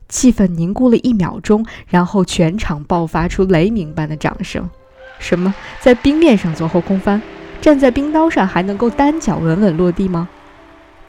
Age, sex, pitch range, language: 20-39, female, 170-230 Hz, Chinese